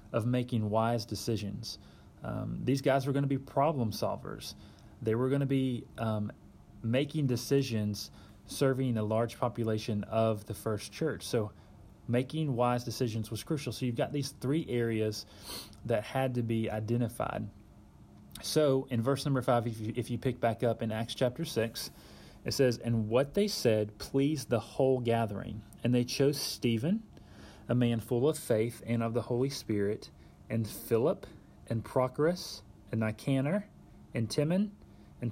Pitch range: 110-130 Hz